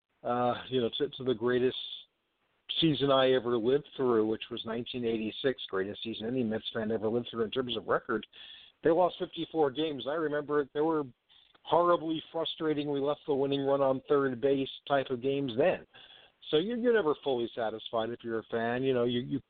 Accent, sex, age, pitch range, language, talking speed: American, male, 50-69, 115-145 Hz, English, 195 wpm